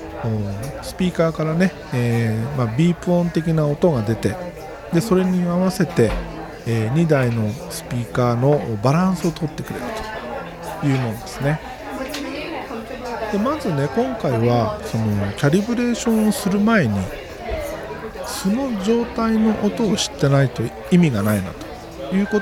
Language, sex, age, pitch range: Japanese, male, 50-69, 120-200 Hz